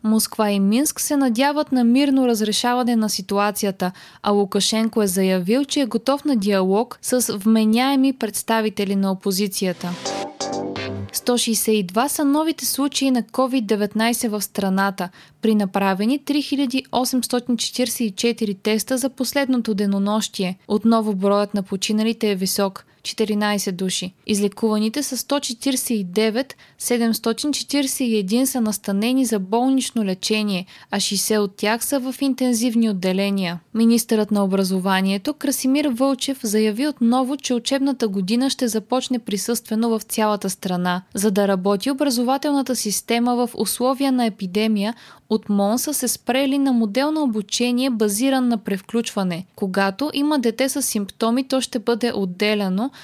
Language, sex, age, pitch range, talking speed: Bulgarian, female, 20-39, 205-260 Hz, 125 wpm